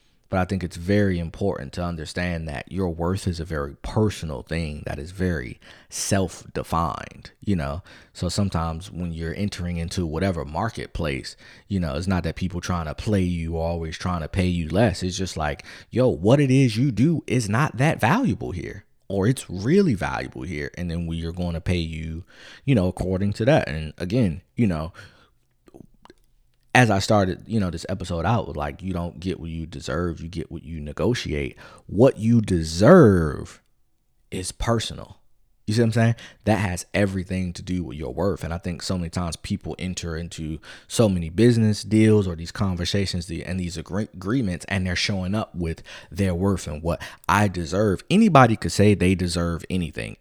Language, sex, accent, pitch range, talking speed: English, male, American, 80-105 Hz, 190 wpm